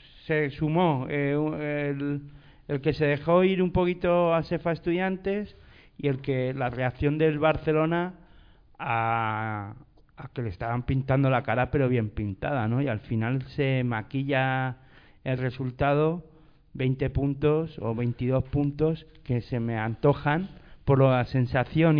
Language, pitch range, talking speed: Spanish, 125-155 Hz, 140 wpm